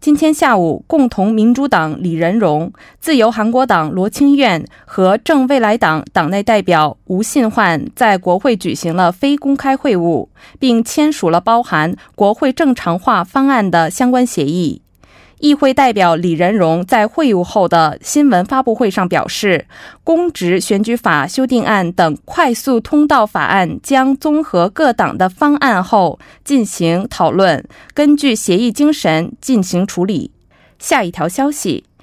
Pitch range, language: 175-275 Hz, Korean